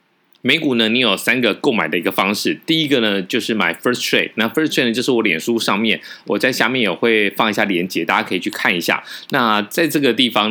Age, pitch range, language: 20-39, 100-125 Hz, Chinese